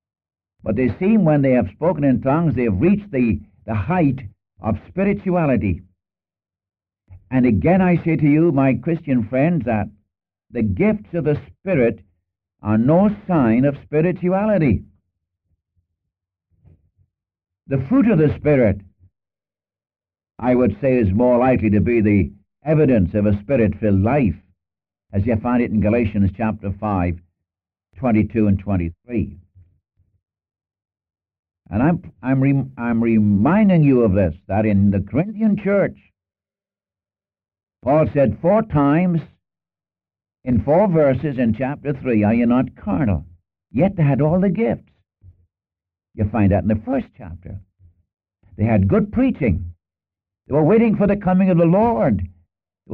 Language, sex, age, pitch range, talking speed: English, male, 60-79, 95-145 Hz, 140 wpm